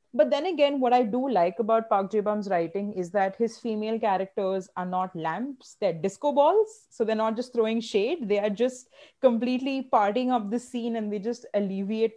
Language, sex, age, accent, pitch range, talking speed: English, female, 30-49, Indian, 200-245 Hz, 200 wpm